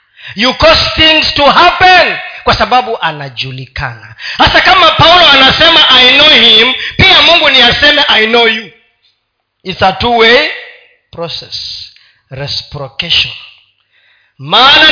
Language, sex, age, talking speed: Swahili, male, 40-59, 115 wpm